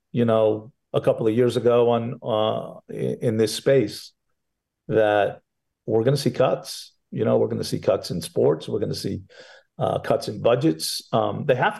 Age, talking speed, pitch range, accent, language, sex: 50-69, 195 wpm, 115-165 Hz, American, English, male